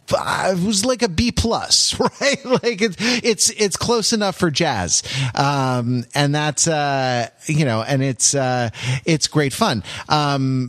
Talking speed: 155 wpm